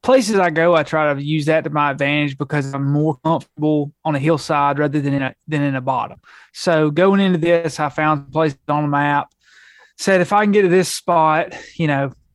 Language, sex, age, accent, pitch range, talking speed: English, male, 20-39, American, 145-175 Hz, 225 wpm